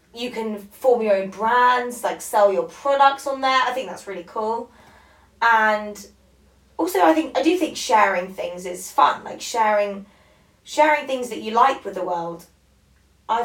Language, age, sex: English, 20-39, female